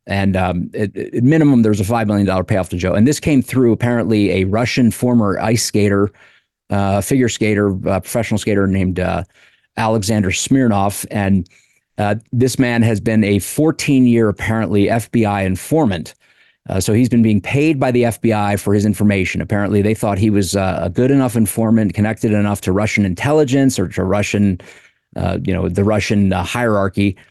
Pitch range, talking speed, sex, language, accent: 100-115 Hz, 175 wpm, male, English, American